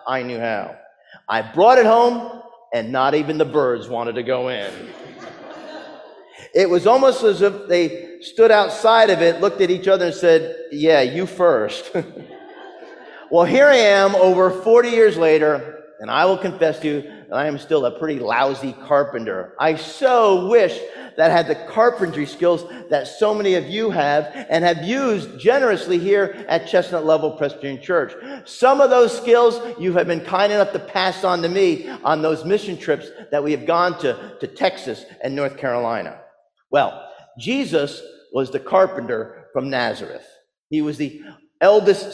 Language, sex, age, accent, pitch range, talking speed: English, male, 40-59, American, 155-225 Hz, 170 wpm